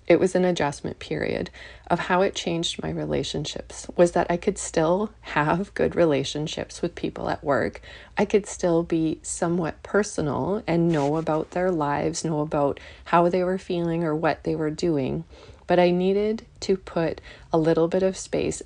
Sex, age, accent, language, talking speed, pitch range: female, 30-49, American, English, 175 wpm, 150-180 Hz